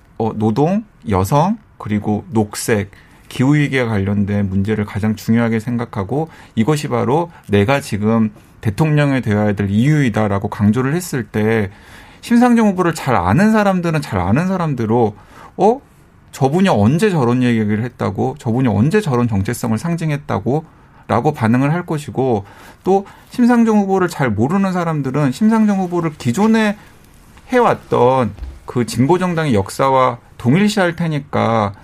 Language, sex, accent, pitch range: Korean, male, native, 110-175 Hz